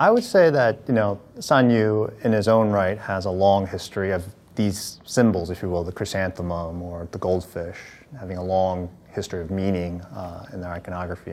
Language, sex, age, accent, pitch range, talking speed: English, male, 30-49, American, 90-115 Hz, 195 wpm